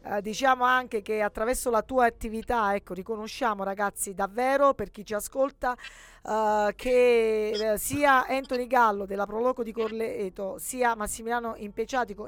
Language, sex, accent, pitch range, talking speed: Italian, female, native, 215-270 Hz, 140 wpm